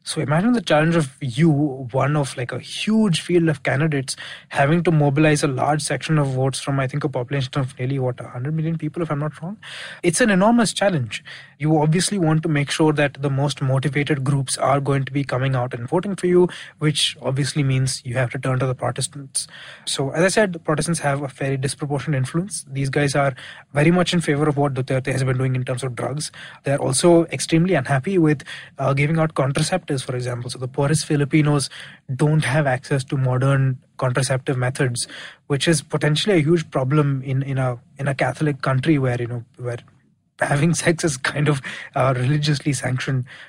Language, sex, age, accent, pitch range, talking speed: English, male, 20-39, Indian, 130-155 Hz, 205 wpm